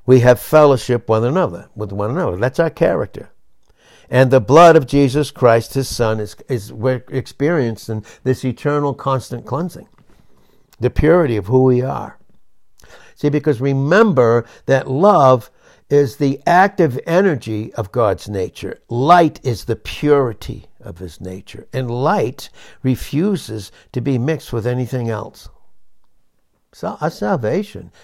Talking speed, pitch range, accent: 140 wpm, 110-140 Hz, American